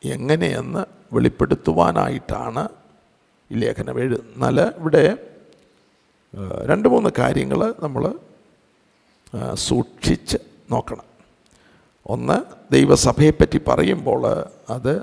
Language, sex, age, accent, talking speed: Malayalam, male, 50-69, native, 70 wpm